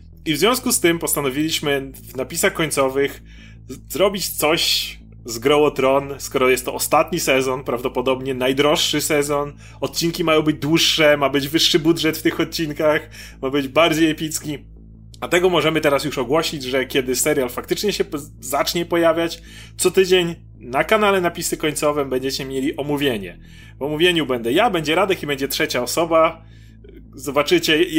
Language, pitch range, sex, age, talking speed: Polish, 130-160 Hz, male, 30-49, 155 wpm